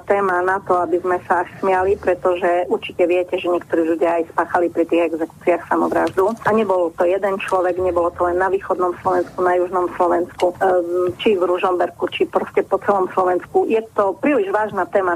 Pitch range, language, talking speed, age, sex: 180-210 Hz, Slovak, 185 wpm, 30-49, female